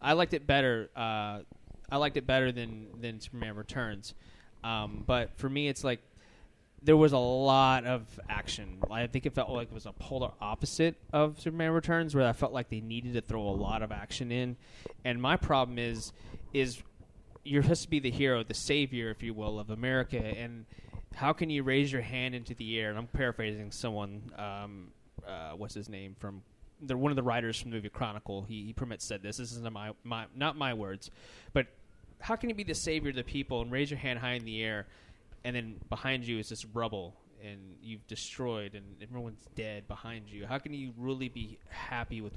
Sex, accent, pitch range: male, American, 105-135 Hz